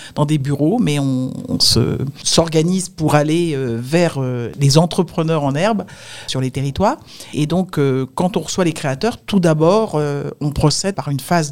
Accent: French